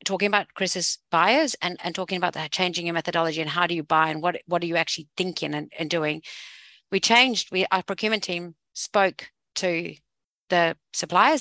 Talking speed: 195 wpm